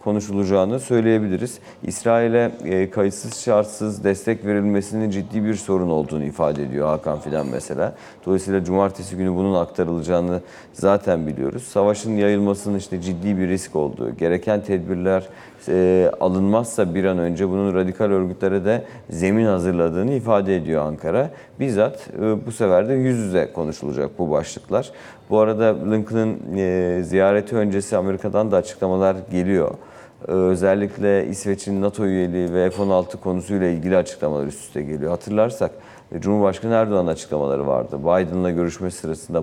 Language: Turkish